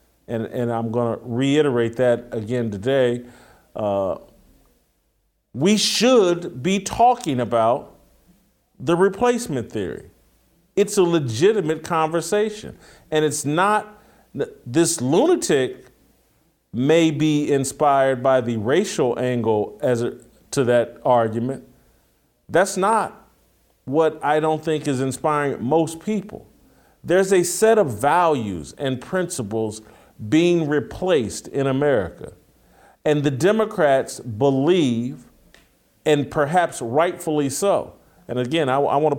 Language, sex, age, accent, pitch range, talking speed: English, male, 40-59, American, 130-175 Hz, 110 wpm